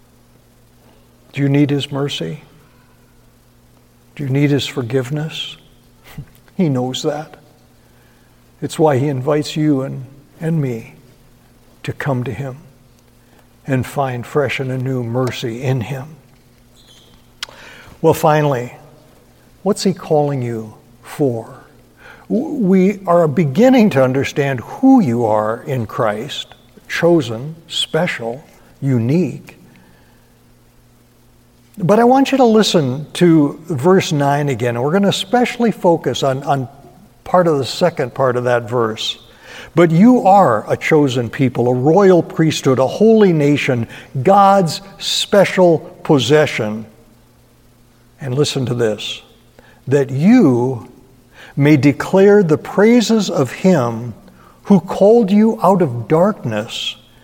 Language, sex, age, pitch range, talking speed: English, male, 60-79, 120-170 Hz, 120 wpm